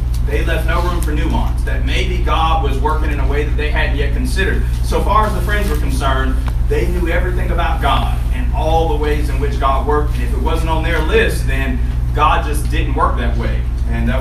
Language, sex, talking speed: English, male, 230 wpm